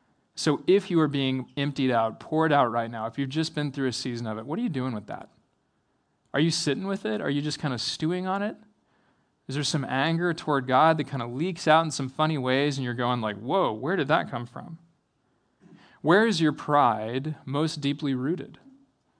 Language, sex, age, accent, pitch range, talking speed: English, male, 20-39, American, 135-160 Hz, 220 wpm